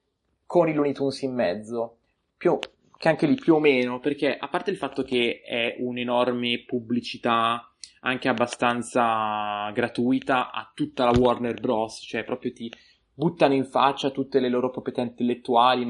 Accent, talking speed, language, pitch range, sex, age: native, 160 wpm, Italian, 115-135 Hz, male, 20-39